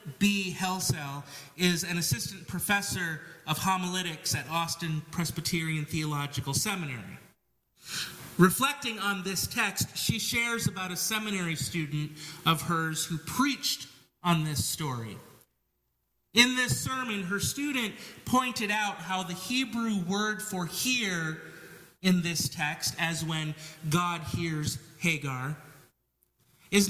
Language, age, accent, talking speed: English, 30-49, American, 115 wpm